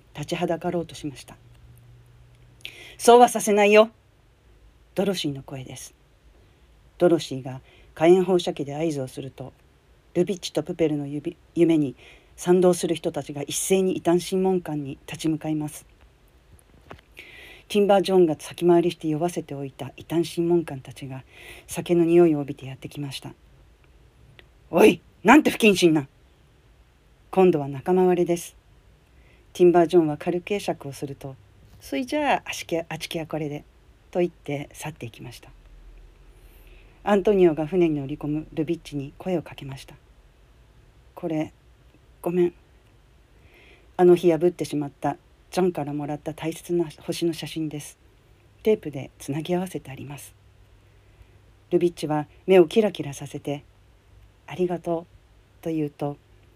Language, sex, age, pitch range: English, female, 40-59, 130-175 Hz